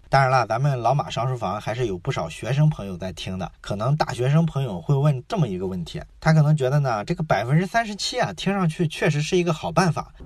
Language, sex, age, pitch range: Chinese, male, 20-39, 125-170 Hz